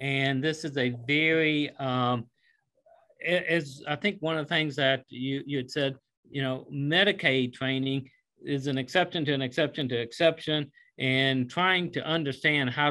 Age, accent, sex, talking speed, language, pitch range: 50-69, American, male, 165 wpm, English, 130-155 Hz